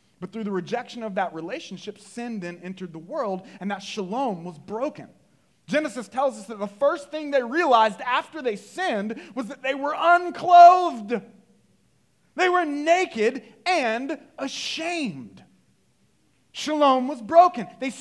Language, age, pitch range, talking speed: English, 30-49, 195-270 Hz, 145 wpm